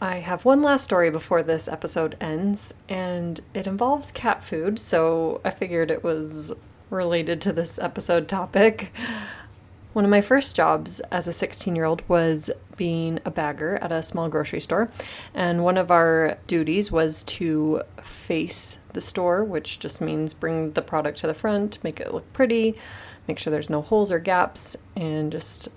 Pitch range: 160-190 Hz